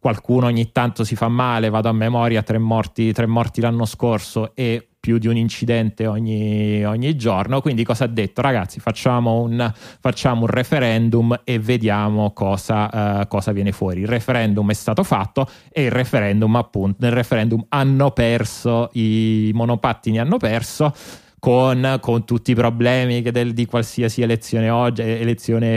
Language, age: Italian, 30-49